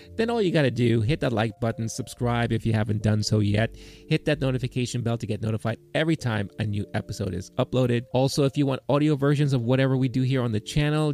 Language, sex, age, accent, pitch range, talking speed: English, male, 30-49, American, 115-145 Hz, 245 wpm